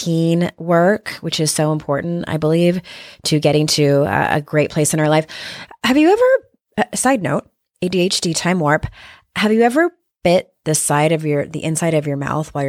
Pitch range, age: 150-200 Hz, 30-49